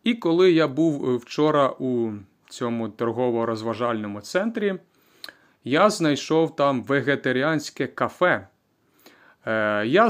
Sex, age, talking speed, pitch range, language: male, 30-49, 90 wpm, 115-165 Hz, Ukrainian